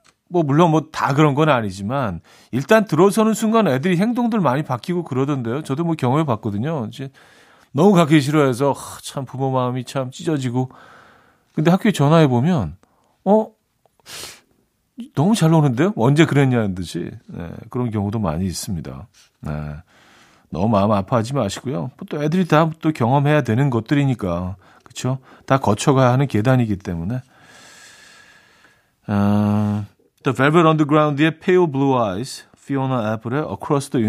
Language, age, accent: Korean, 40-59, native